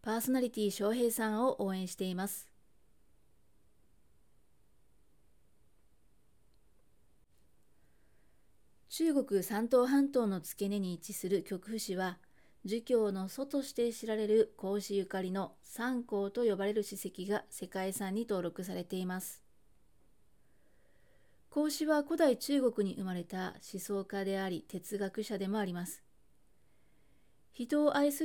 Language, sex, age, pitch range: Japanese, female, 30-49, 190-235 Hz